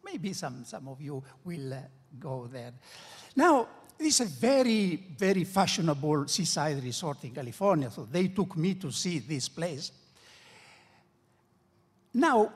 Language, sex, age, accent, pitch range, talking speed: English, male, 60-79, Italian, 145-205 Hz, 140 wpm